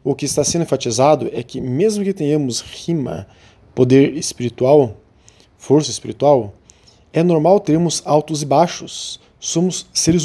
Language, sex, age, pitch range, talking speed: Portuguese, male, 20-39, 120-160 Hz, 135 wpm